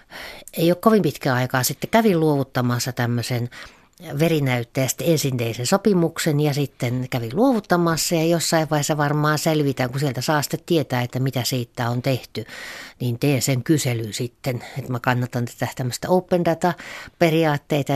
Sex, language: female, Finnish